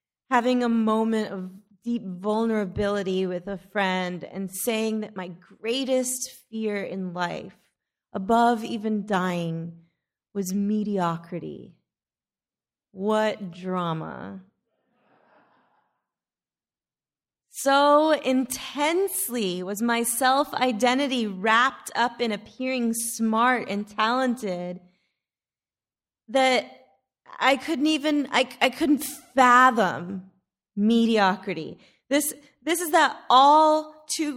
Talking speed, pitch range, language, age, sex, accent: 90 wpm, 200-260 Hz, English, 30-49, female, American